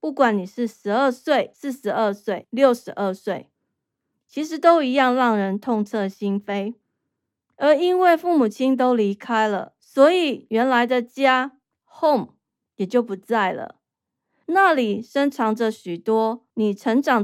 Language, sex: Chinese, female